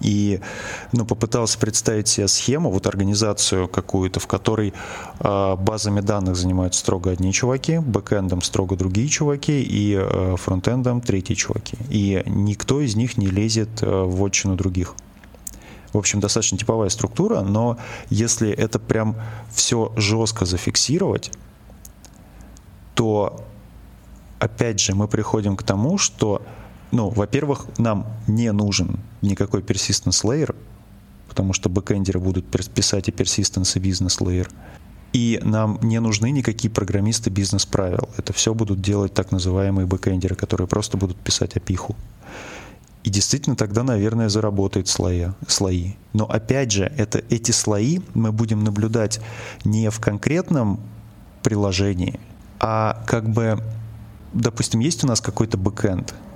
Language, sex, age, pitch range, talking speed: Russian, male, 20-39, 100-115 Hz, 130 wpm